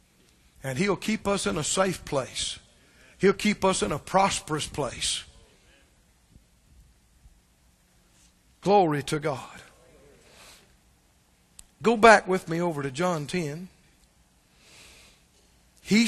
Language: English